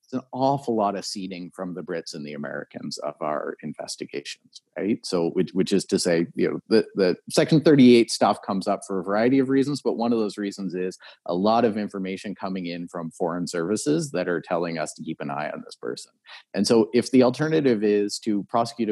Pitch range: 95-130 Hz